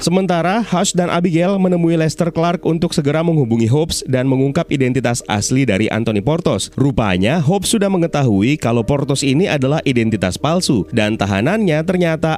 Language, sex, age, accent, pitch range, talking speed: Indonesian, male, 30-49, native, 115-160 Hz, 150 wpm